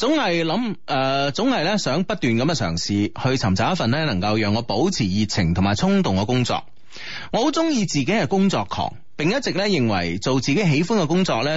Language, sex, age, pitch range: Chinese, male, 30-49, 105-170 Hz